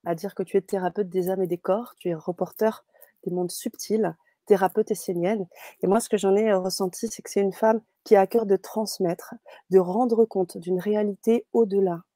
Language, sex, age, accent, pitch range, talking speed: French, female, 30-49, French, 180-220 Hz, 210 wpm